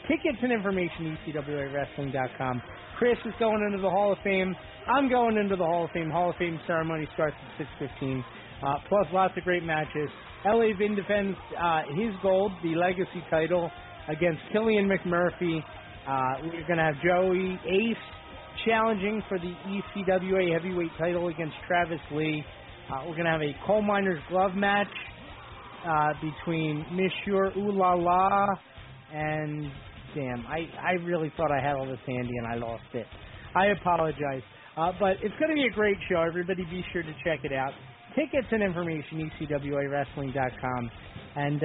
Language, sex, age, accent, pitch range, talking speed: English, male, 30-49, American, 145-200 Hz, 165 wpm